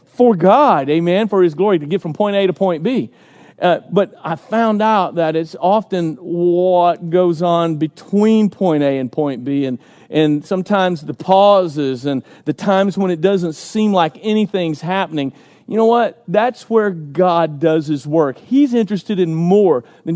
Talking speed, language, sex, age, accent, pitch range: 180 wpm, English, male, 40-59, American, 155-195 Hz